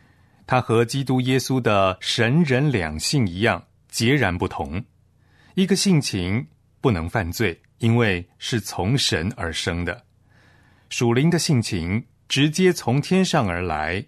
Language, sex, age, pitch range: Chinese, male, 30-49, 95-130 Hz